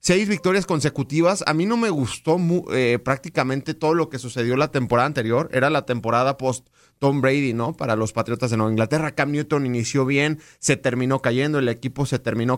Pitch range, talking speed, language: 130-180 Hz, 190 wpm, Spanish